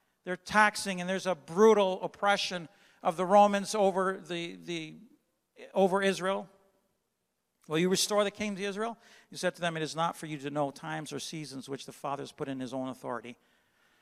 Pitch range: 165-210 Hz